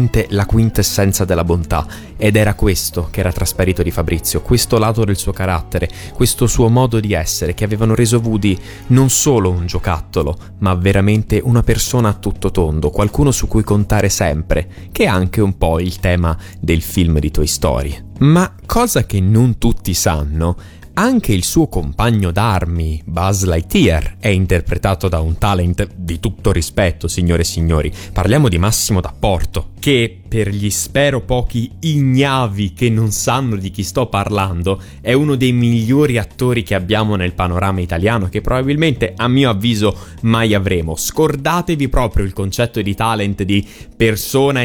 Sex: male